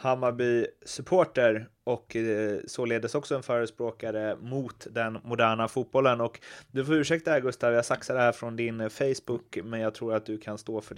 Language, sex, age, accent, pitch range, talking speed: Swedish, male, 30-49, native, 110-140 Hz, 180 wpm